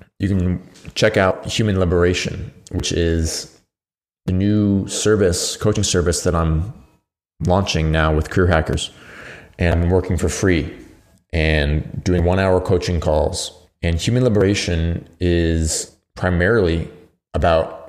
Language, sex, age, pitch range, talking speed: English, male, 20-39, 85-95 Hz, 125 wpm